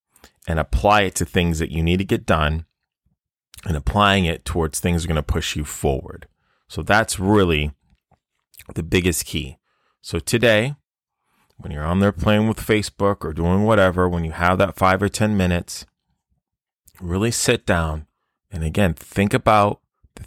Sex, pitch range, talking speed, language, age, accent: male, 80-105 Hz, 170 wpm, English, 30-49, American